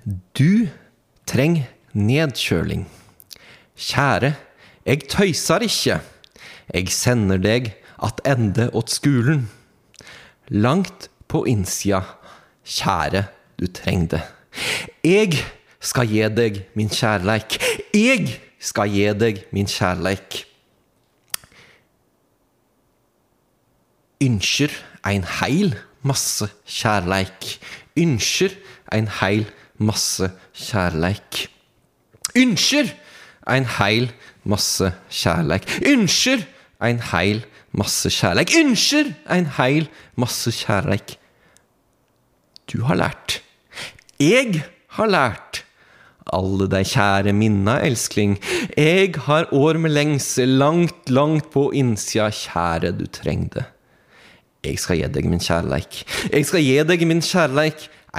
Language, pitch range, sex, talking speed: English, 100-150 Hz, male, 95 wpm